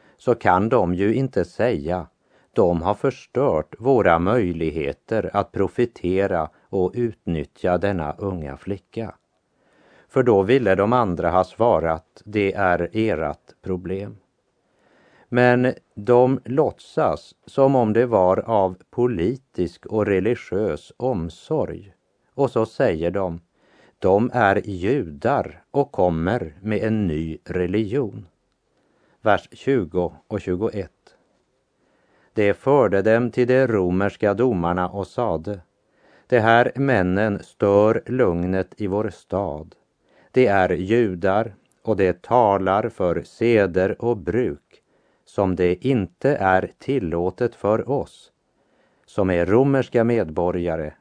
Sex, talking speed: male, 115 wpm